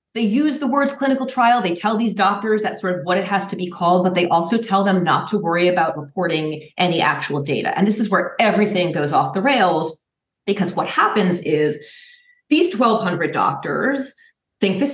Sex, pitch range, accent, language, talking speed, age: female, 160-220 Hz, American, English, 200 wpm, 30-49